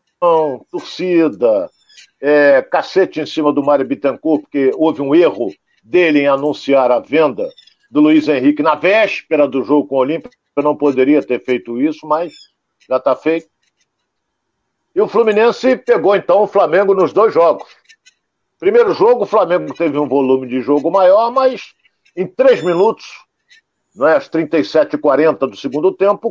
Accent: Brazilian